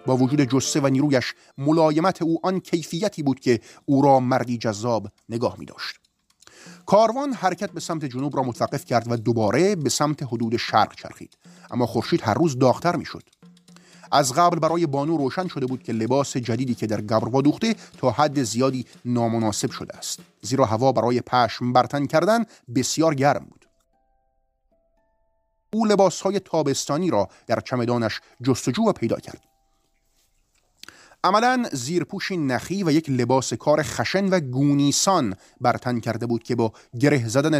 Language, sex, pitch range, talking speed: Persian, male, 120-165 Hz, 150 wpm